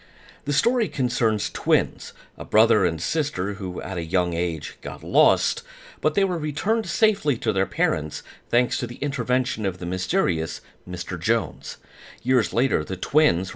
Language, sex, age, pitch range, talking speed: English, male, 40-59, 90-140 Hz, 160 wpm